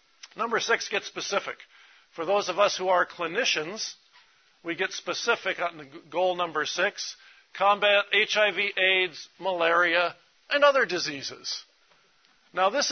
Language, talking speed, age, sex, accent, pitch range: English, 130 wpm, 50-69, male, American, 165-195 Hz